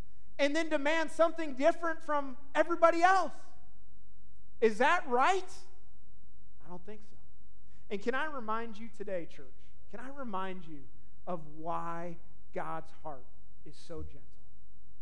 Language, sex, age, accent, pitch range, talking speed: English, male, 30-49, American, 175-265 Hz, 130 wpm